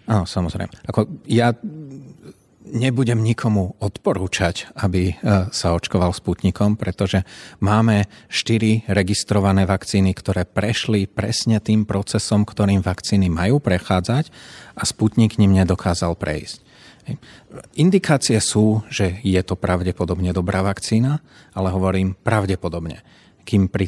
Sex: male